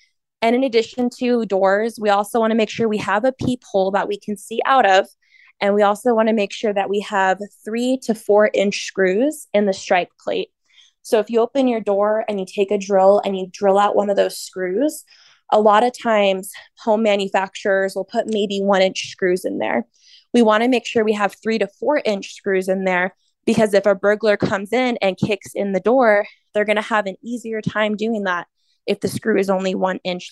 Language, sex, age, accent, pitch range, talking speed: English, female, 20-39, American, 195-230 Hz, 225 wpm